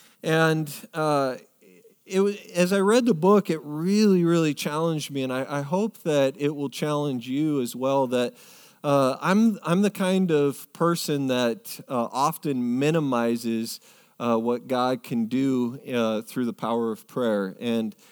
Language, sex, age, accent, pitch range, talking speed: English, male, 40-59, American, 125-165 Hz, 160 wpm